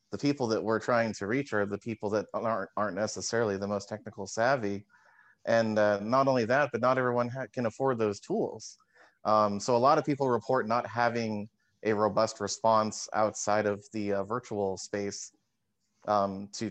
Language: English